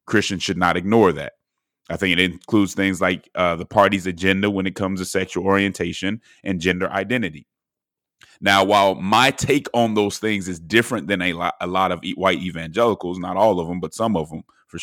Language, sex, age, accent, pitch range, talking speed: English, male, 30-49, American, 90-110 Hz, 200 wpm